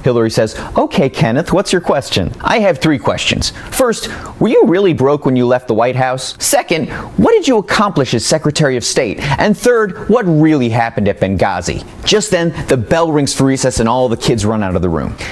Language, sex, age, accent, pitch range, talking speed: English, male, 30-49, American, 115-160 Hz, 210 wpm